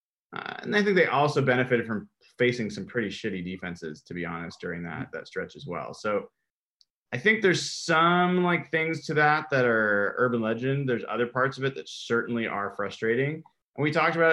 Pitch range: 105-140 Hz